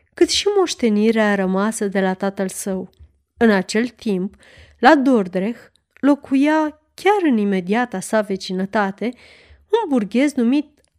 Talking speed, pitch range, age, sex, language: 120 wpm, 195-260 Hz, 30-49, female, Romanian